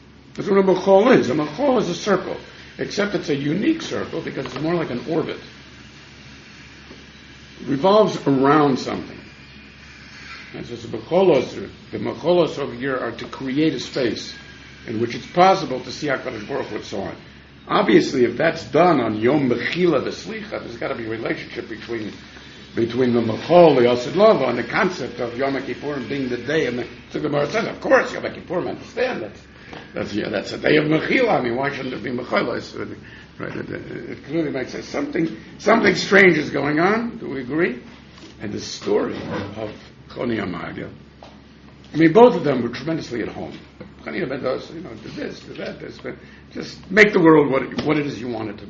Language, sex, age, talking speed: English, male, 60-79, 180 wpm